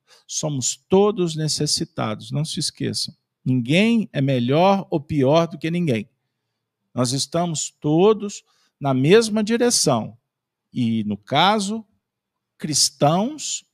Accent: Brazilian